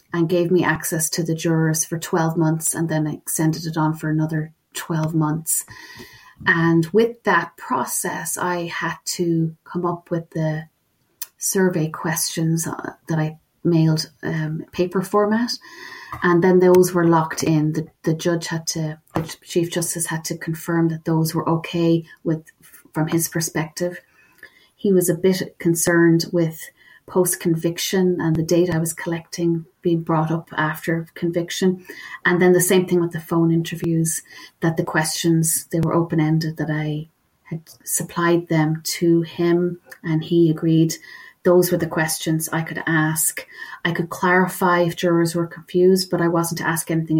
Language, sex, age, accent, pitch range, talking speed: English, female, 30-49, Irish, 160-175 Hz, 160 wpm